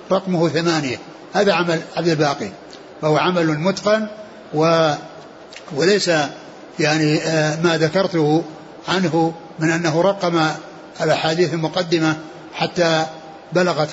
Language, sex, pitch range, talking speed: Arabic, male, 160-190 Hz, 95 wpm